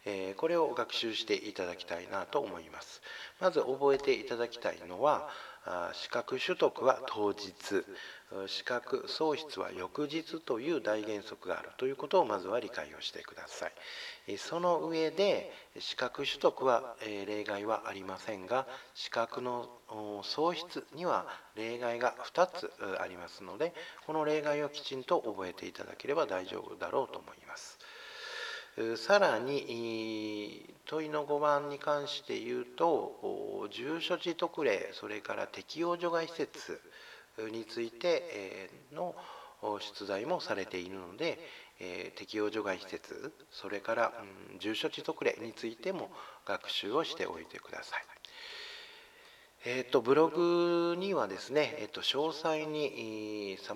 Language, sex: Japanese, male